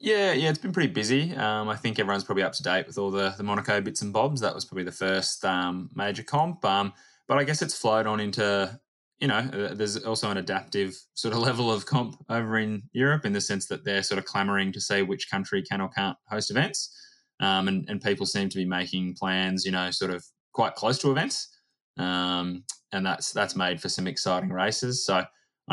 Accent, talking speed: Australian, 230 wpm